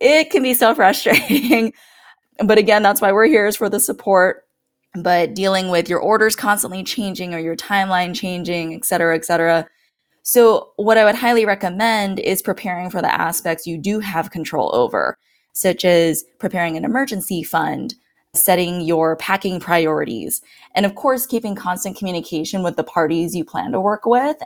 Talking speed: 170 wpm